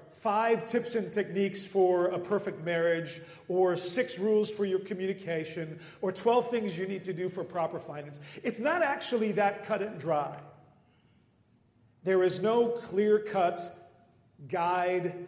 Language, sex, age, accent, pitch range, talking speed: English, male, 40-59, American, 160-210 Hz, 140 wpm